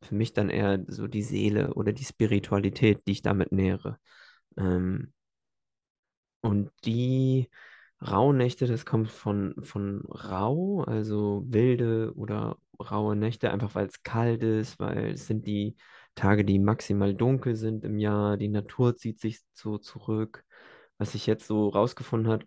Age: 20-39